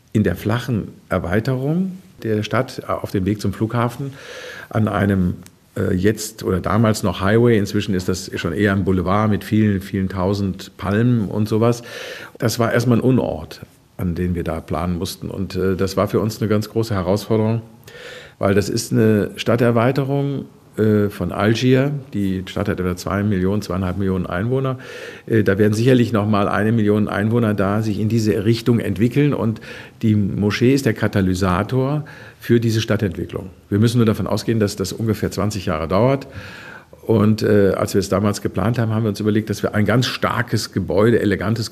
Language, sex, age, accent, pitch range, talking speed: German, male, 50-69, German, 100-115 Hz, 175 wpm